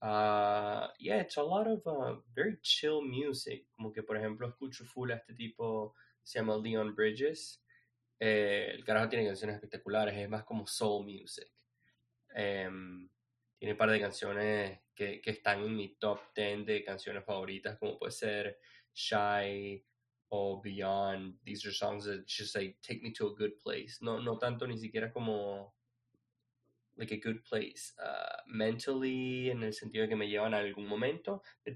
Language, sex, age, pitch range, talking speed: English, male, 20-39, 105-120 Hz, 175 wpm